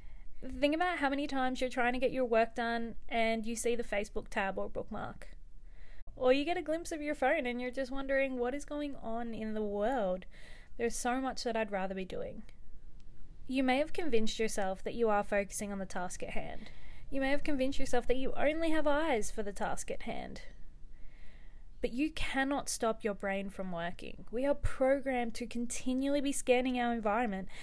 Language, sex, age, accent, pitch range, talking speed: English, female, 20-39, Australian, 215-275 Hz, 200 wpm